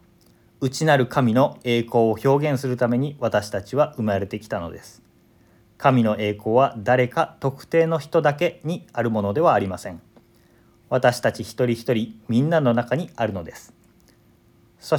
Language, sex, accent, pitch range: Japanese, male, native, 115-150 Hz